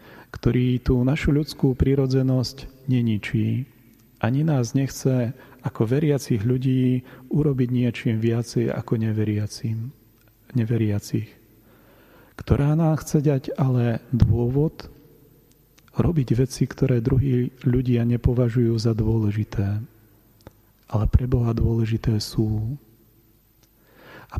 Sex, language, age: male, Slovak, 40-59